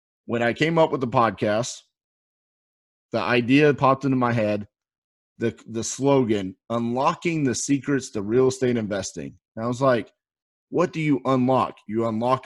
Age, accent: 30-49, American